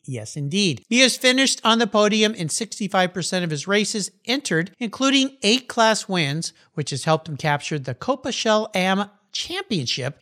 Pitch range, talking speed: 150-220 Hz, 165 wpm